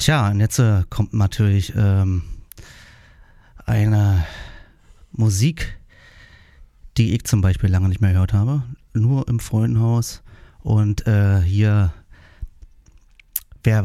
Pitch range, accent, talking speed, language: 90-110 Hz, German, 110 wpm, German